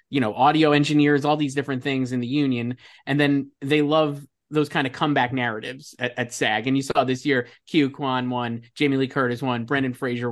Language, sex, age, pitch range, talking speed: English, male, 20-39, 125-145 Hz, 215 wpm